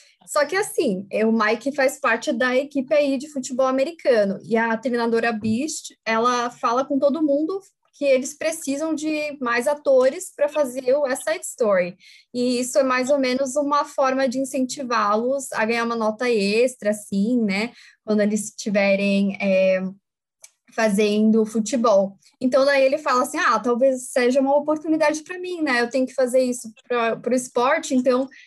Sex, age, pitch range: female, 10-29, 215-280 Hz